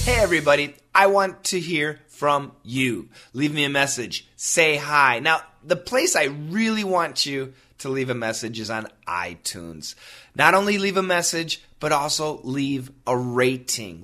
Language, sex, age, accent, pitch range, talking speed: English, male, 30-49, American, 125-180 Hz, 165 wpm